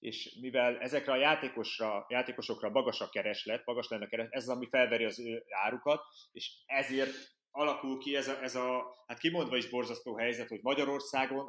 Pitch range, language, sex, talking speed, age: 115-135 Hz, Hungarian, male, 165 wpm, 30-49